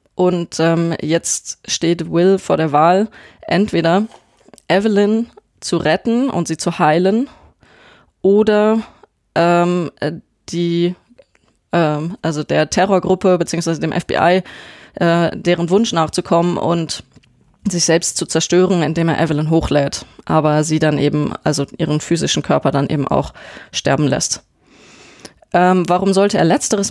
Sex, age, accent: female, 20-39, German